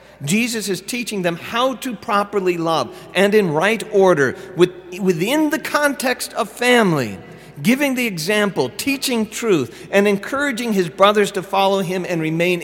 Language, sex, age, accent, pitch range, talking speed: English, male, 40-59, American, 150-195 Hz, 145 wpm